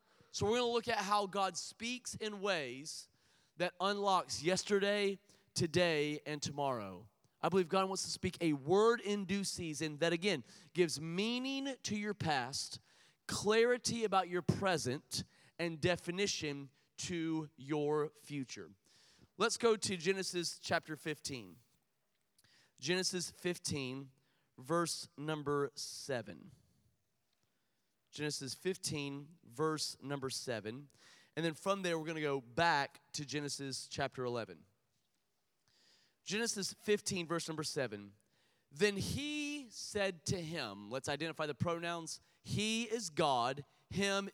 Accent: American